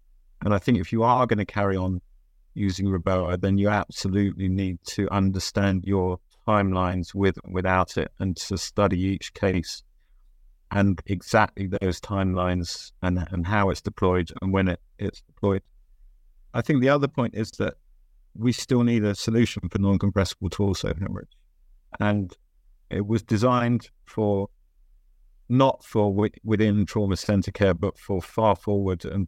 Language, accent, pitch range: English, British, 90-105 Hz